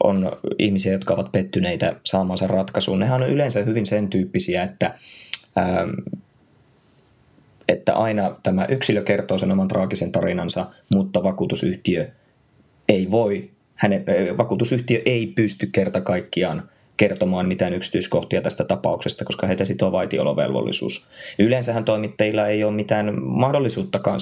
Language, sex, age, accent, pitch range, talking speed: Finnish, male, 20-39, native, 95-115 Hz, 115 wpm